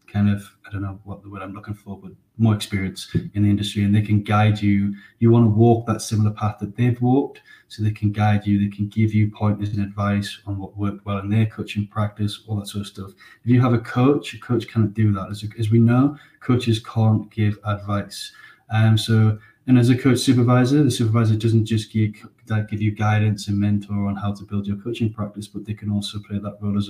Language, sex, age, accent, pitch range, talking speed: English, male, 20-39, British, 100-110 Hz, 235 wpm